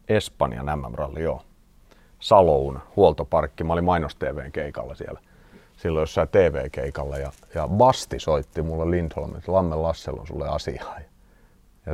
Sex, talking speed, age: male, 135 wpm, 30-49